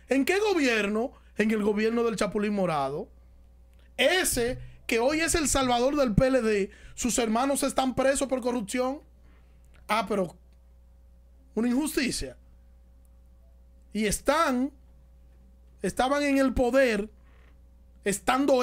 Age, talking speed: 30-49, 110 wpm